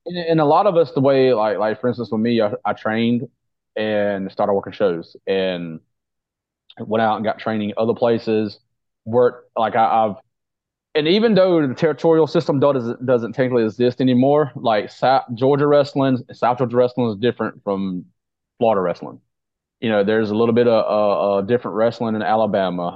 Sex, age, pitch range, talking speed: male, 30-49, 100-125 Hz, 180 wpm